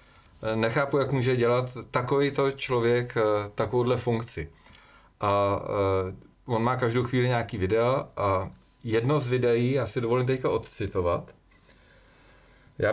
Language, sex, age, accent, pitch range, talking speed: Czech, male, 40-59, native, 115-145 Hz, 110 wpm